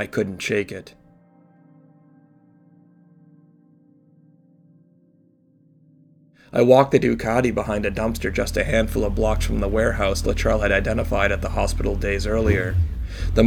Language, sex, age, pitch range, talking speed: English, male, 30-49, 100-120 Hz, 125 wpm